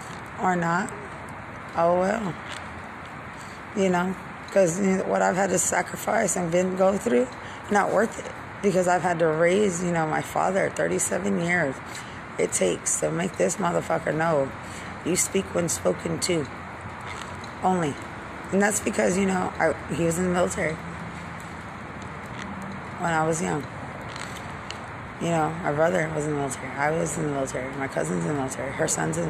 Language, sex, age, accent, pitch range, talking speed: English, female, 20-39, American, 145-180 Hz, 160 wpm